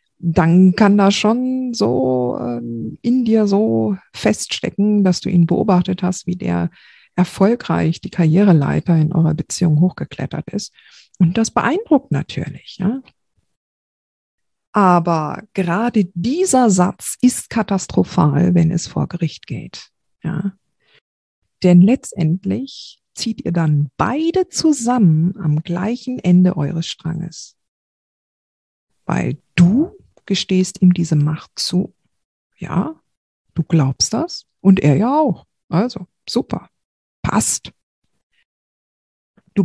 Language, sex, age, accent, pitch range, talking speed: German, female, 50-69, German, 165-225 Hz, 110 wpm